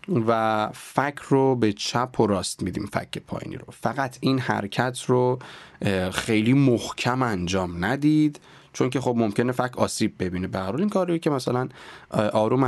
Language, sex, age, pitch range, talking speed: Persian, male, 30-49, 100-140 Hz, 155 wpm